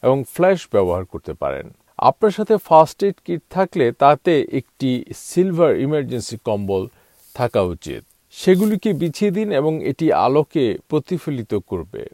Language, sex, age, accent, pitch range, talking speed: Bengali, male, 50-69, native, 125-180 Hz, 100 wpm